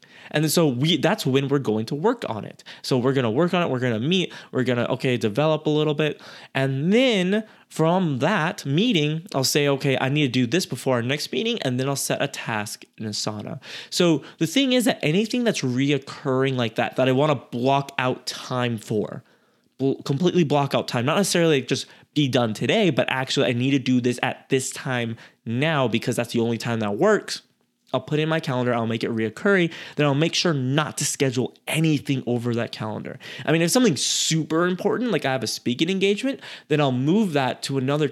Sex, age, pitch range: male, 20-39, 125-160 Hz